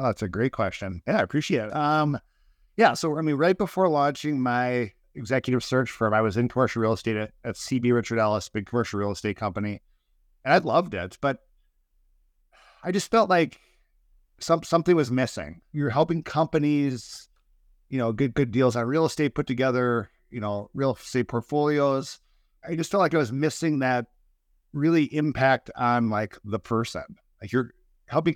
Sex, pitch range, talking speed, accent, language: male, 105-140 Hz, 180 wpm, American, English